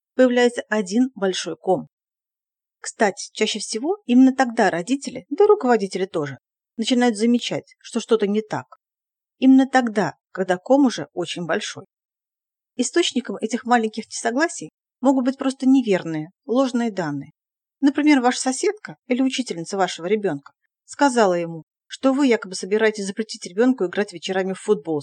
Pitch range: 185-250 Hz